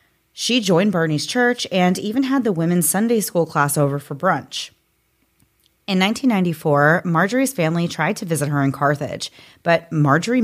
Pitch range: 145-190 Hz